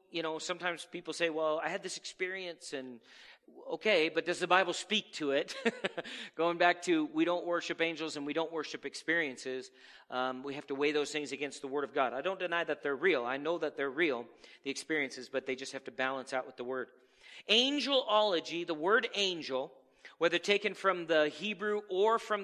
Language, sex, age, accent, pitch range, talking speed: English, male, 40-59, American, 150-195 Hz, 205 wpm